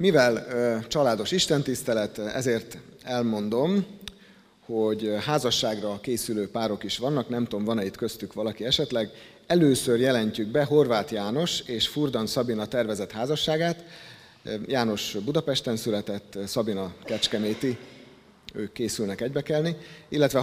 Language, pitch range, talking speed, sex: Hungarian, 105-145 Hz, 110 wpm, male